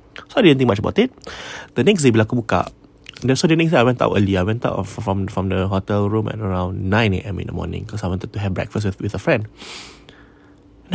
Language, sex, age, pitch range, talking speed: English, male, 20-39, 95-120 Hz, 260 wpm